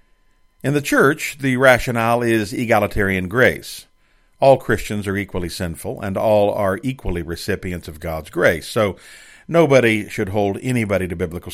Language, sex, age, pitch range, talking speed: English, male, 50-69, 90-115 Hz, 145 wpm